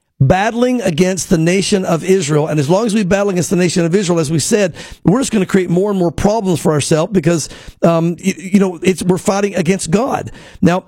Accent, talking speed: American, 230 wpm